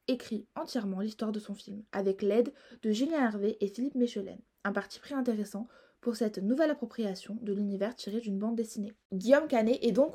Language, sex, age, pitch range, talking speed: French, female, 20-39, 205-260 Hz, 185 wpm